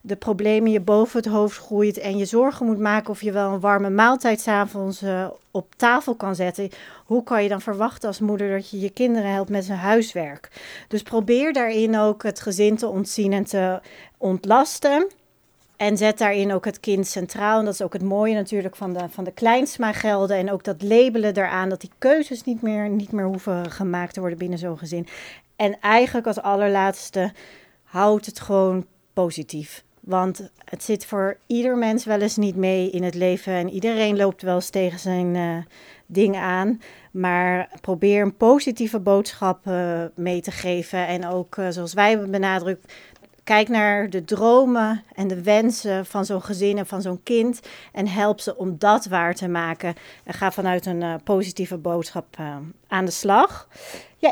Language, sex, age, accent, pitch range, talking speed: Dutch, female, 40-59, Dutch, 185-220 Hz, 185 wpm